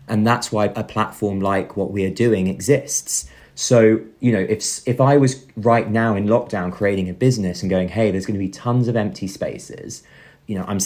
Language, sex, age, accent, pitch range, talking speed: English, male, 30-49, British, 95-115 Hz, 215 wpm